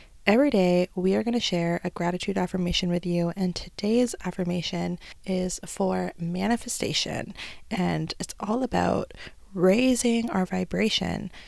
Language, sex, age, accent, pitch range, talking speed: English, female, 20-39, American, 175-200 Hz, 130 wpm